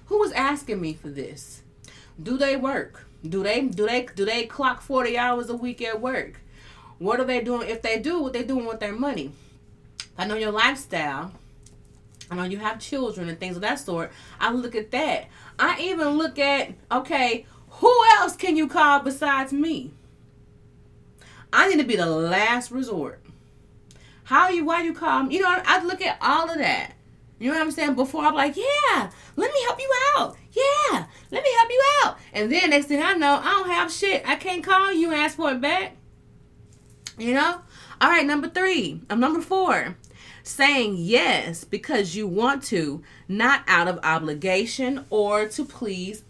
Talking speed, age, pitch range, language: 190 wpm, 30-49, 205-305 Hz, English